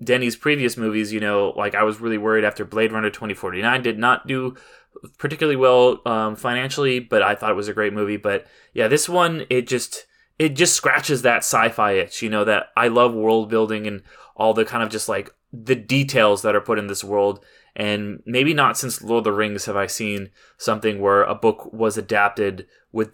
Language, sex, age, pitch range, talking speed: English, male, 20-39, 100-120 Hz, 210 wpm